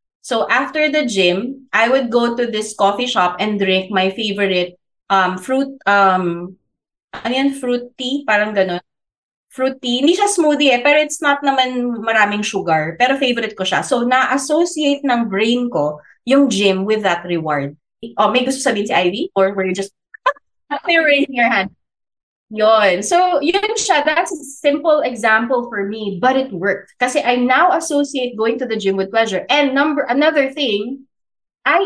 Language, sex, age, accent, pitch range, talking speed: Filipino, female, 20-39, native, 200-275 Hz, 170 wpm